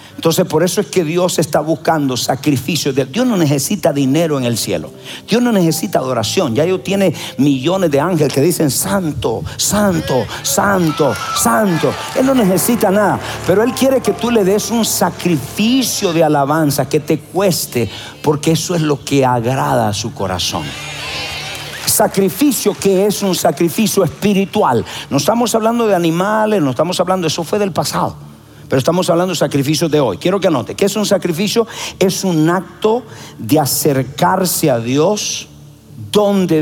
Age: 60-79